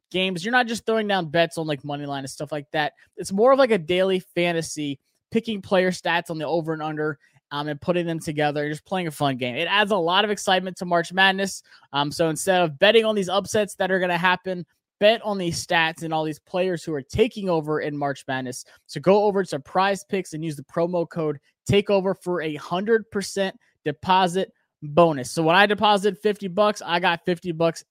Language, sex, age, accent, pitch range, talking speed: English, male, 20-39, American, 150-190 Hz, 225 wpm